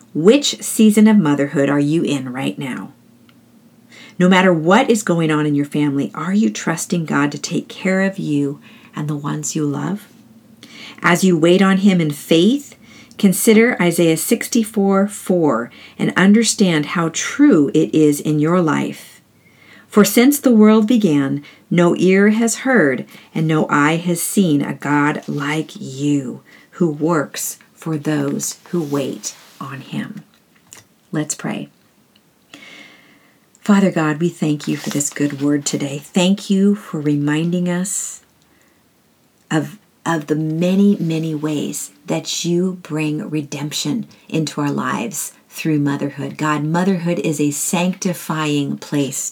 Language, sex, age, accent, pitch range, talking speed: English, female, 50-69, American, 150-200 Hz, 140 wpm